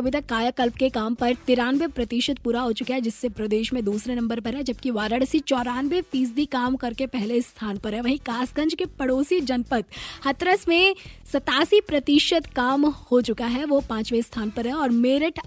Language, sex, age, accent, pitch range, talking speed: Hindi, female, 20-39, native, 240-300 Hz, 180 wpm